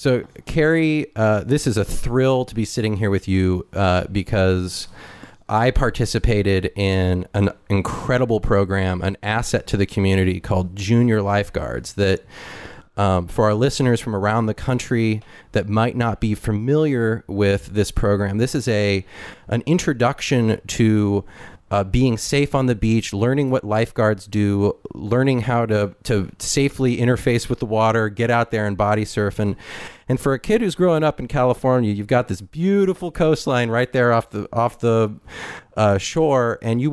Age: 30-49